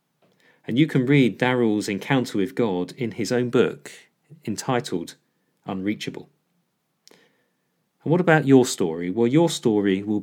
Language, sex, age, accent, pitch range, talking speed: English, male, 40-59, British, 100-145 Hz, 135 wpm